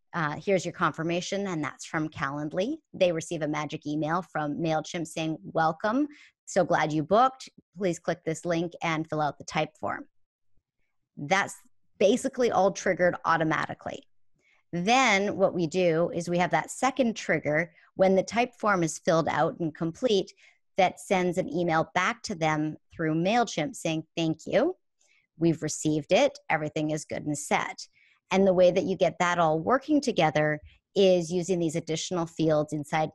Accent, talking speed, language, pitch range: American, 165 wpm, English, 155-190 Hz